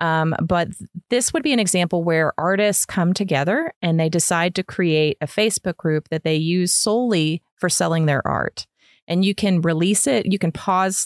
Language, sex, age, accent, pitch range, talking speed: English, female, 30-49, American, 155-195 Hz, 190 wpm